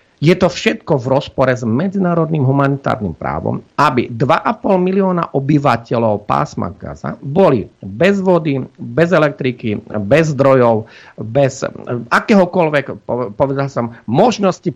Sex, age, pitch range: male, 50-69, 120-155 Hz